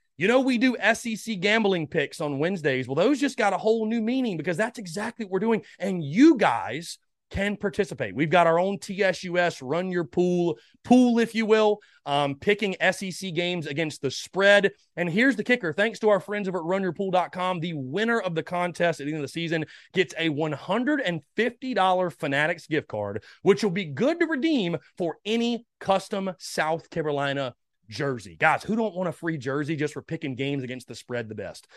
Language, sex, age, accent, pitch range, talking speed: English, male, 30-49, American, 150-205 Hz, 195 wpm